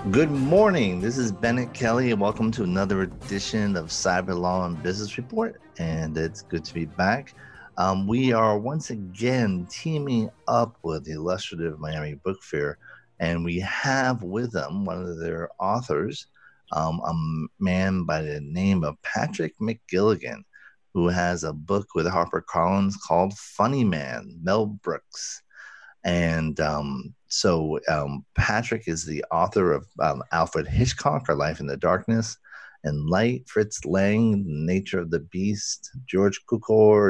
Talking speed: 150 wpm